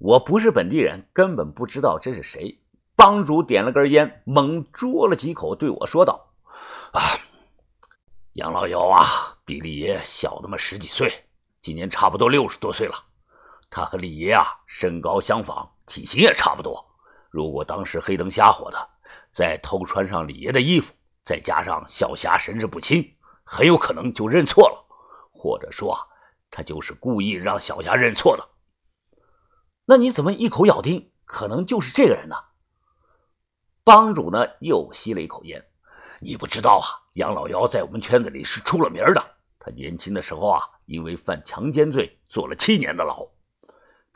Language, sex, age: Chinese, male, 50-69